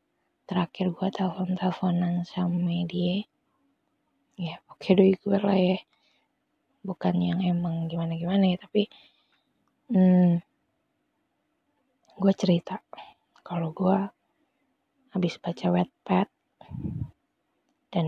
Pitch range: 170-235 Hz